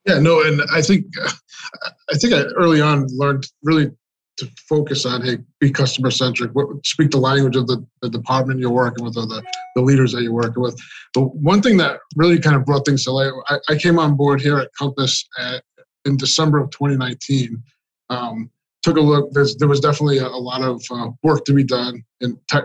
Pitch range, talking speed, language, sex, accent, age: 125-150 Hz, 215 wpm, English, male, American, 20-39